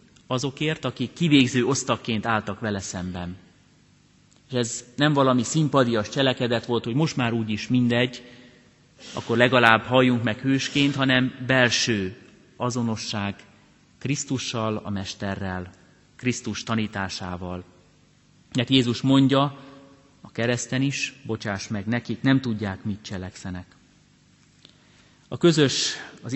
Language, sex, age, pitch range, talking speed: Hungarian, male, 30-49, 110-130 Hz, 110 wpm